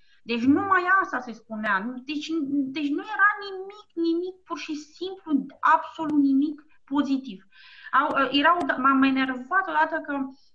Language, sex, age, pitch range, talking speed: Romanian, female, 30-49, 235-320 Hz, 135 wpm